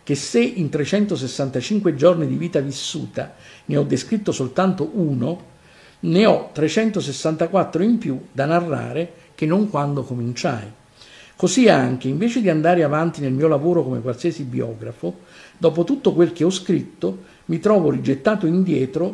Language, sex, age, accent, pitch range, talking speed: Italian, male, 50-69, native, 130-185 Hz, 145 wpm